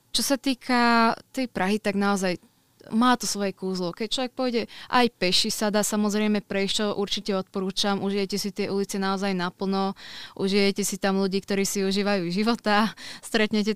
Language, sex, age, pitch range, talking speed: Slovak, female, 20-39, 195-220 Hz, 160 wpm